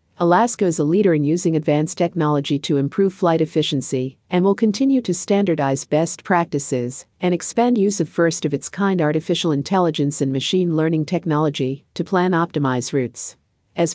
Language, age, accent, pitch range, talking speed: English, 50-69, American, 145-180 Hz, 155 wpm